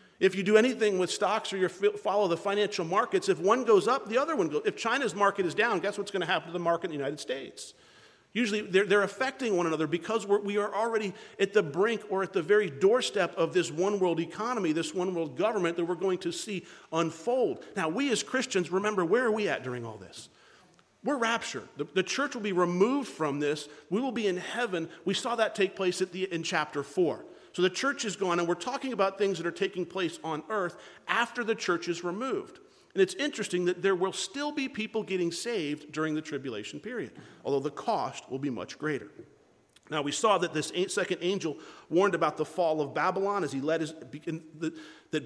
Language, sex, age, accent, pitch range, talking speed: English, male, 50-69, American, 165-215 Hz, 225 wpm